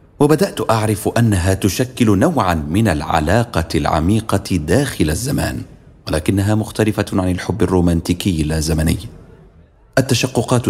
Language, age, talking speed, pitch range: Arabic, 40-59, 95 wpm, 85-115 Hz